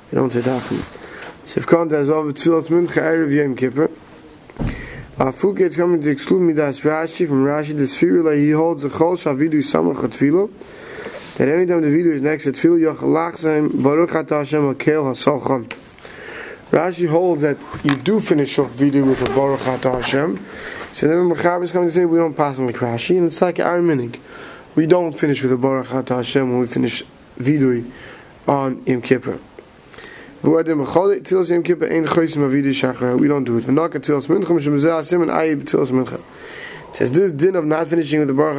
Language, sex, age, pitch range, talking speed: English, male, 30-49, 135-165 Hz, 160 wpm